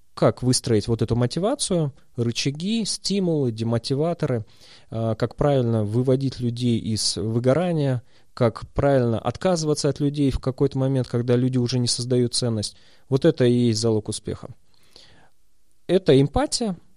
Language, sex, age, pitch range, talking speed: Russian, male, 30-49, 110-135 Hz, 125 wpm